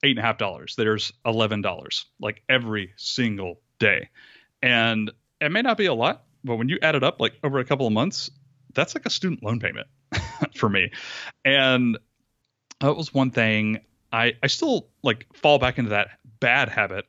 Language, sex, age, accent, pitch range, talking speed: English, male, 30-49, American, 105-130 Hz, 185 wpm